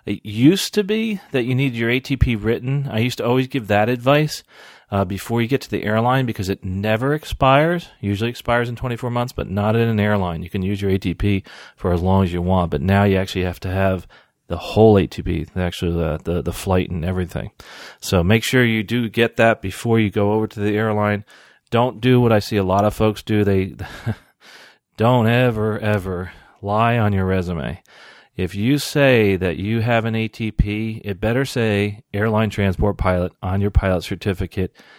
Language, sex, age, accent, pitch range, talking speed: English, male, 40-59, American, 95-115 Hz, 200 wpm